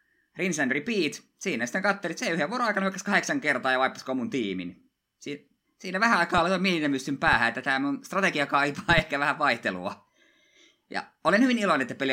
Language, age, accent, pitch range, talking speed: Finnish, 20-39, native, 105-150 Hz, 185 wpm